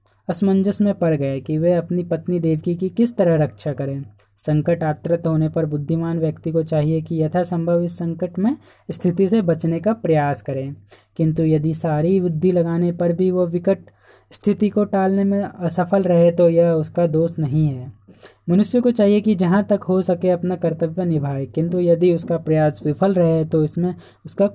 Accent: native